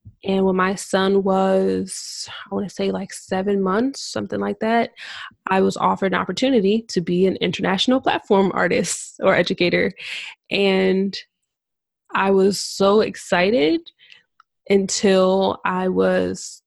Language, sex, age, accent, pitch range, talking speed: English, female, 20-39, American, 180-200 Hz, 130 wpm